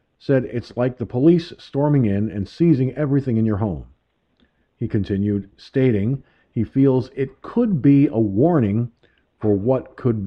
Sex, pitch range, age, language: male, 100-135 Hz, 50-69, English